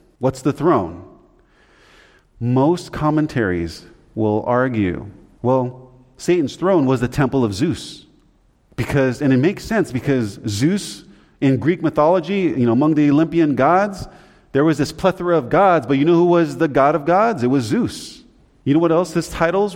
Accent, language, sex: American, English, male